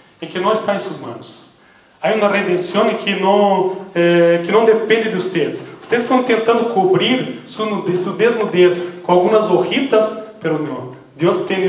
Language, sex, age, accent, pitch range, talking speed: English, male, 30-49, Brazilian, 175-220 Hz, 180 wpm